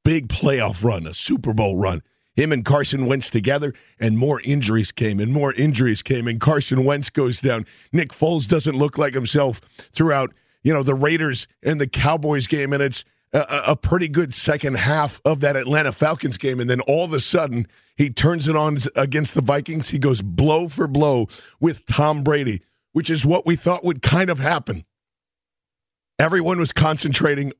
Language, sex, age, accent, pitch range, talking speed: English, male, 50-69, American, 125-155 Hz, 185 wpm